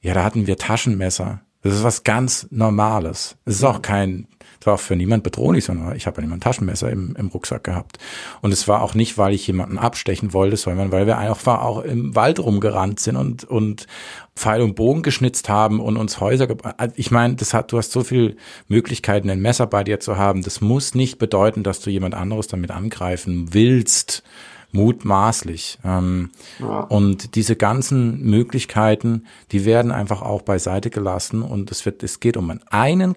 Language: German